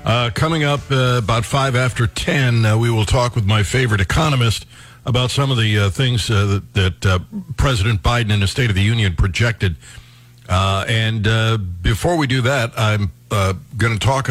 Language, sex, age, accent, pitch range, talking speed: English, male, 60-79, American, 105-130 Hz, 195 wpm